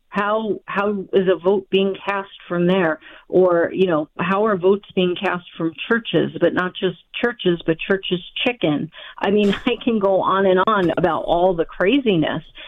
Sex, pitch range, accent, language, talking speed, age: female, 170-210 Hz, American, English, 180 wpm, 40-59